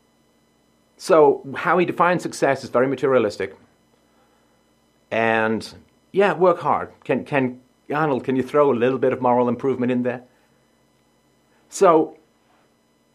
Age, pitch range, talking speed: 40-59, 95-130 Hz, 125 wpm